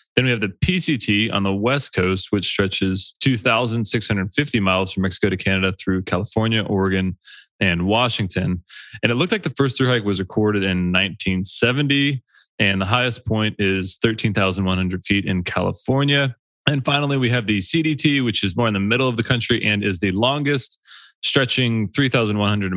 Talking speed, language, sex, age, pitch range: 165 wpm, English, male, 20-39, 95-130 Hz